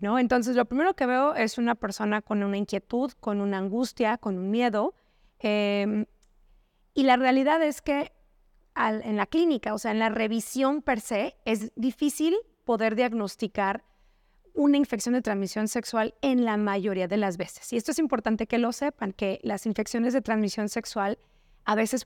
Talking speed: 170 wpm